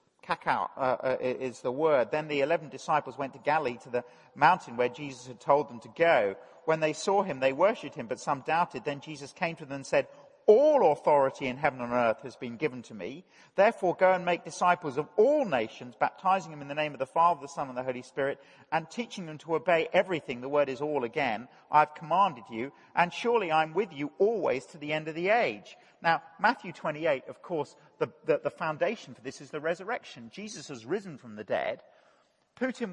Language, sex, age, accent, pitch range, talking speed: English, male, 50-69, British, 125-170 Hz, 220 wpm